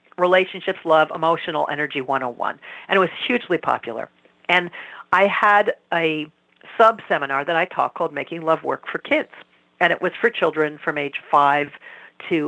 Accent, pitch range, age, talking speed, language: American, 160-230 Hz, 50-69, 160 wpm, English